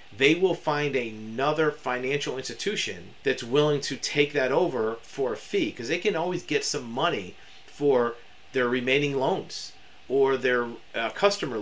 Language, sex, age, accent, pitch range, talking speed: English, male, 40-59, American, 125-150 Hz, 155 wpm